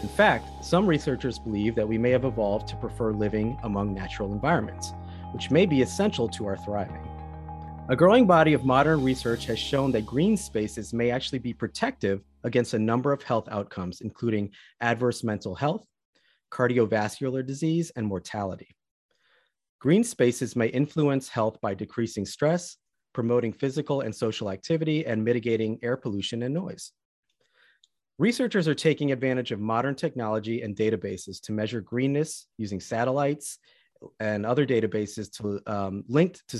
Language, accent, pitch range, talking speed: English, American, 105-140 Hz, 150 wpm